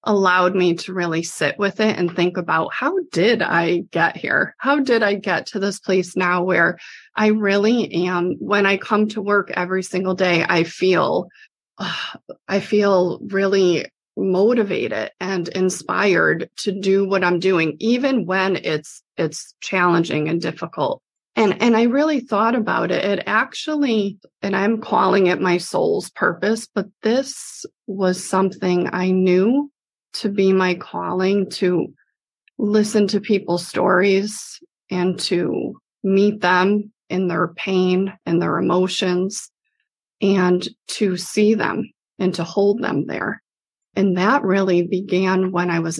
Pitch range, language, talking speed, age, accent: 180-210 Hz, English, 145 wpm, 30-49, American